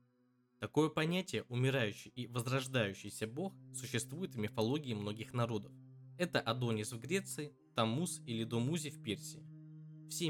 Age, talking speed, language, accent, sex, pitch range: 20-39, 120 wpm, Russian, native, male, 115-145 Hz